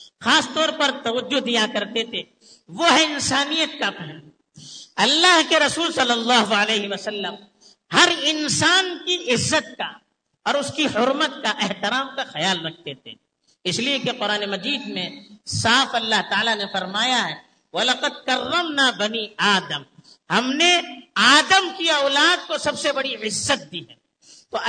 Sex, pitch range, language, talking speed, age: female, 205-310 Hz, Urdu, 155 wpm, 50-69